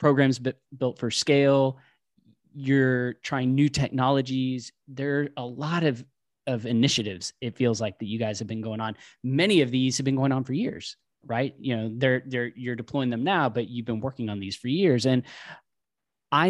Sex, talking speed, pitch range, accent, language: male, 190 wpm, 115-140 Hz, American, English